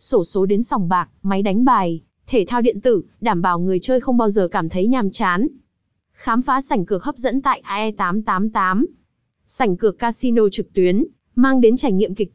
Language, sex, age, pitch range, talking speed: Vietnamese, female, 20-39, 195-255 Hz, 200 wpm